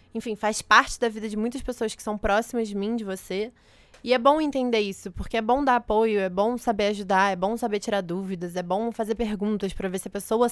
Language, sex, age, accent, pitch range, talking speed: Portuguese, female, 20-39, Brazilian, 195-235 Hz, 245 wpm